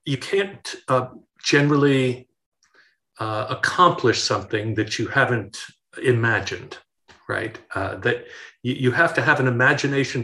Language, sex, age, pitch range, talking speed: English, male, 50-69, 115-145 Hz, 115 wpm